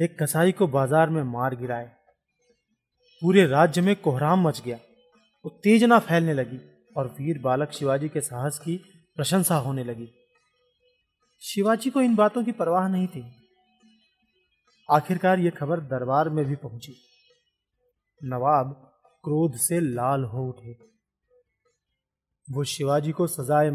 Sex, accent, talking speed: male, native, 130 wpm